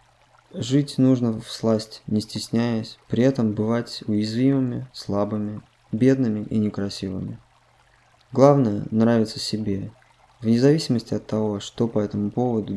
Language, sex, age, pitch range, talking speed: Russian, male, 20-39, 100-125 Hz, 115 wpm